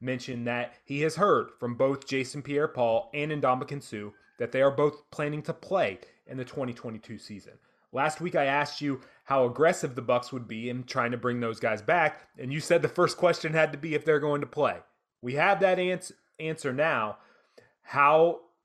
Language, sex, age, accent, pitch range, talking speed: English, male, 30-49, American, 125-145 Hz, 205 wpm